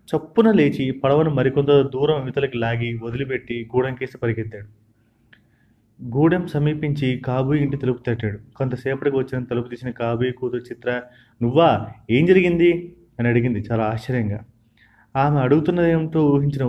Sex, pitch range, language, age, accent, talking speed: male, 115-145 Hz, Telugu, 30-49, native, 120 wpm